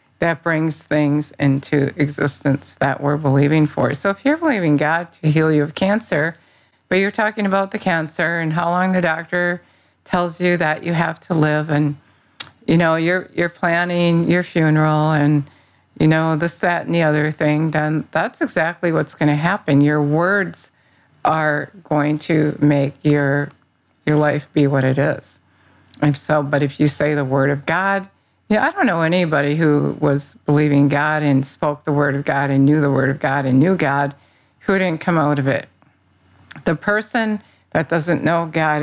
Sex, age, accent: female, 50-69, American